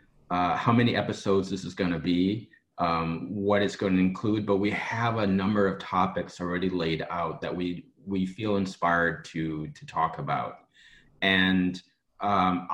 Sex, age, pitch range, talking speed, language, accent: male, 30-49, 90-105 Hz, 165 wpm, English, American